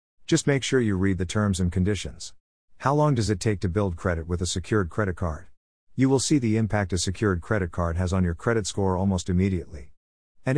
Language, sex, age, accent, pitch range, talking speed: English, male, 50-69, American, 85-115 Hz, 220 wpm